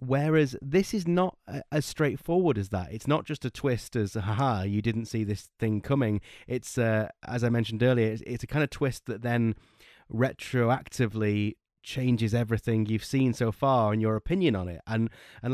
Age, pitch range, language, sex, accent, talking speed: 30-49, 105-125 Hz, English, male, British, 190 wpm